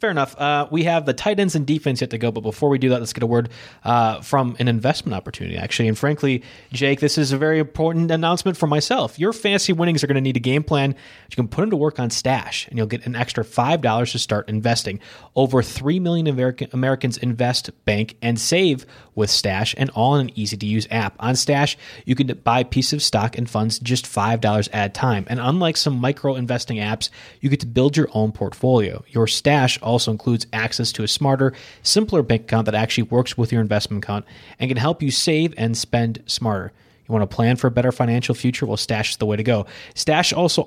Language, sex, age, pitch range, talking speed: English, male, 30-49, 115-140 Hz, 225 wpm